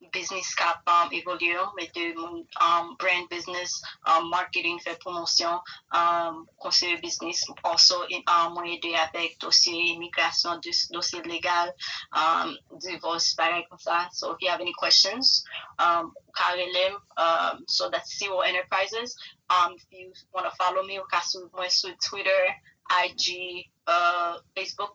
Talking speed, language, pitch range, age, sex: 135 wpm, English, 175-200 Hz, 20-39, female